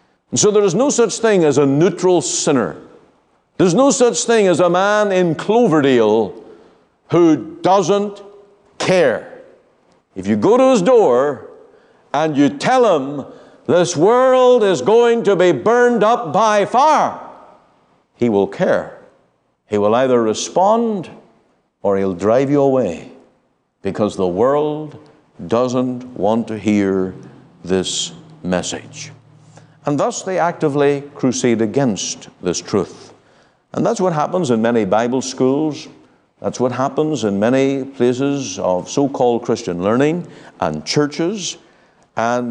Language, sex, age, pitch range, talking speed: English, male, 60-79, 115-190 Hz, 130 wpm